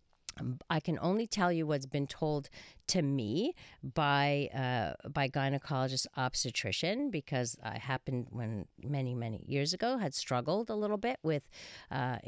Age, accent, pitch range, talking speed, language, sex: 50-69, American, 130-160 Hz, 145 wpm, English, female